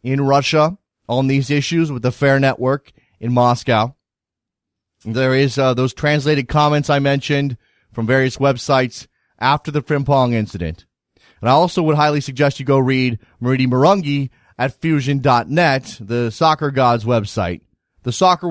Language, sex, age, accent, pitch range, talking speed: English, male, 30-49, American, 120-155 Hz, 145 wpm